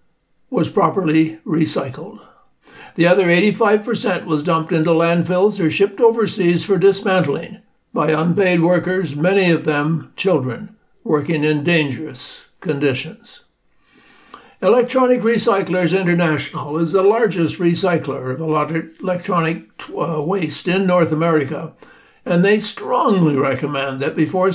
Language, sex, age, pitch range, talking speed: English, male, 60-79, 160-205 Hz, 115 wpm